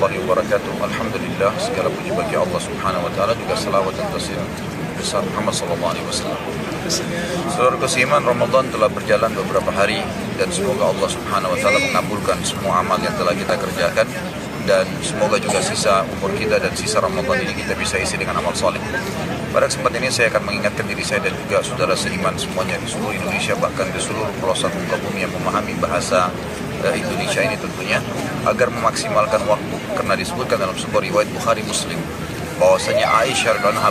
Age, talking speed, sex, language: 30-49, 165 wpm, male, Indonesian